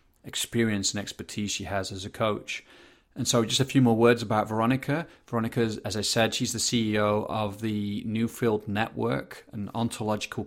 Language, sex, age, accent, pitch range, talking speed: English, male, 30-49, British, 105-115 Hz, 170 wpm